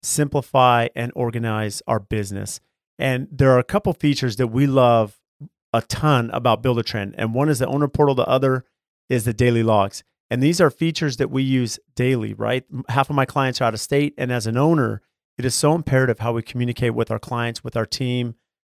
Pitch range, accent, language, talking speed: 120-140 Hz, American, English, 205 wpm